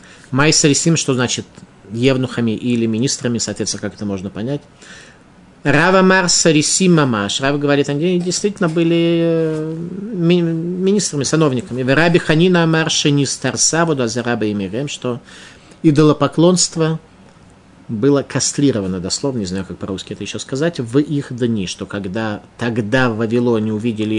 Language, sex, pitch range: Russian, male, 115-155 Hz